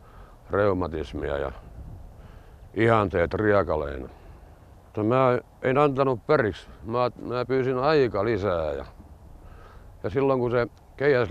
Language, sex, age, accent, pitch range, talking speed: Finnish, male, 60-79, native, 90-130 Hz, 100 wpm